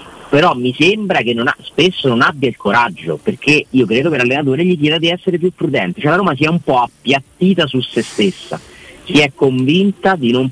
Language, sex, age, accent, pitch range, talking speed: Italian, male, 40-59, native, 115-175 Hz, 215 wpm